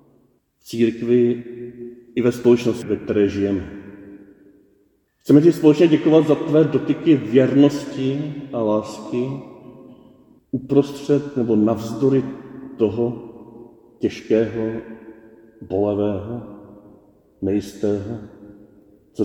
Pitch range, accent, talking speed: 115-145 Hz, native, 80 wpm